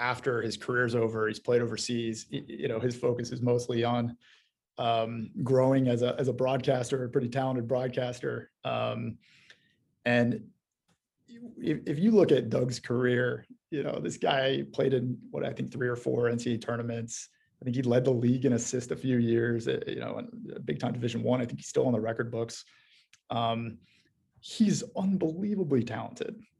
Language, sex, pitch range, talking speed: English, male, 115-135 Hz, 180 wpm